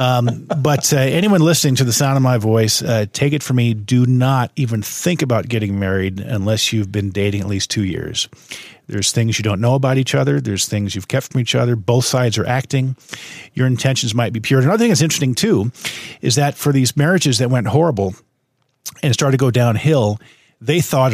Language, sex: English, male